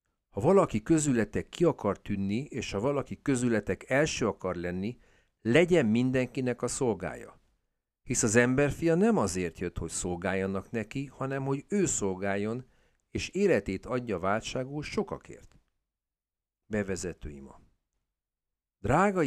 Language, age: Hungarian, 50-69